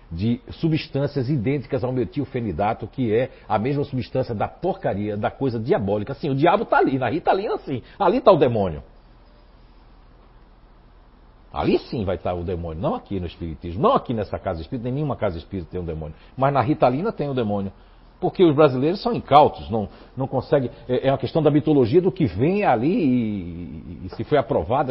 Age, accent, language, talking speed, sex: 60-79, Brazilian, Portuguese, 195 wpm, male